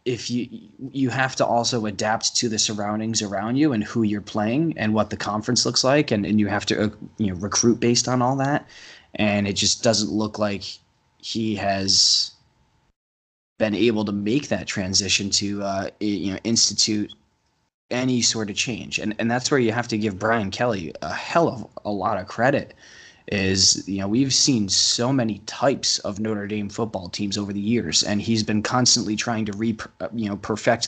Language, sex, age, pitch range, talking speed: English, male, 20-39, 100-115 Hz, 195 wpm